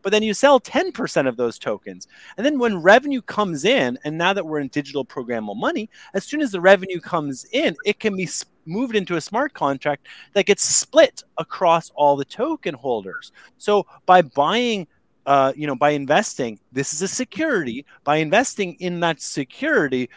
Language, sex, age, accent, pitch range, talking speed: English, male, 30-49, American, 140-210 Hz, 185 wpm